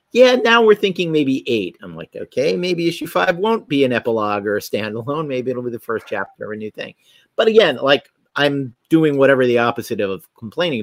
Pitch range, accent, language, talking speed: 105-165 Hz, American, English, 215 wpm